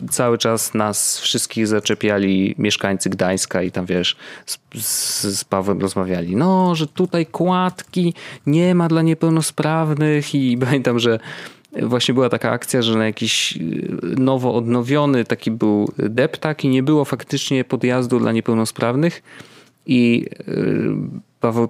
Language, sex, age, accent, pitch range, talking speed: Polish, male, 30-49, native, 115-155 Hz, 125 wpm